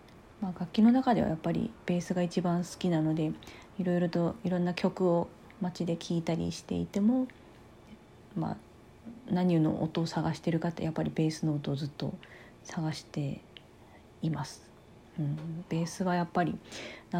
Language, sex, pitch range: Japanese, female, 160-185 Hz